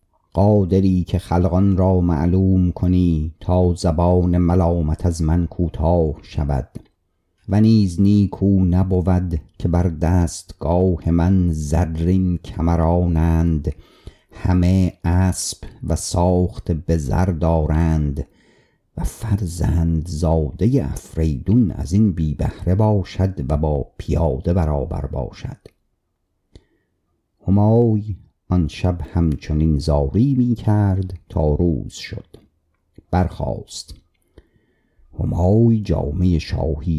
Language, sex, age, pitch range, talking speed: Persian, male, 50-69, 80-95 Hz, 90 wpm